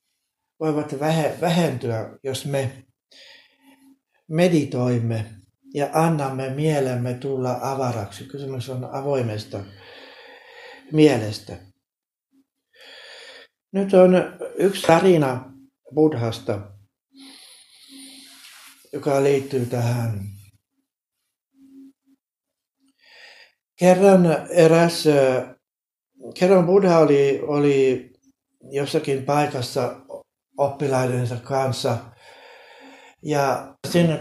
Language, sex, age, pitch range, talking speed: Finnish, male, 60-79, 125-185 Hz, 60 wpm